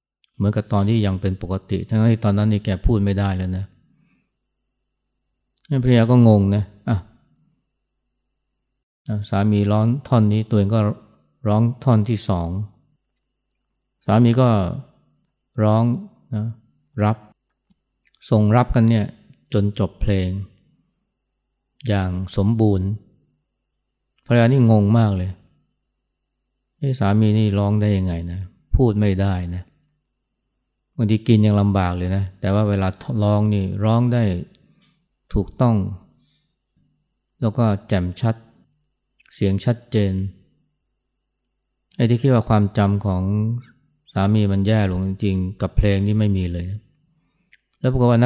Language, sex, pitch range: Thai, male, 100-120 Hz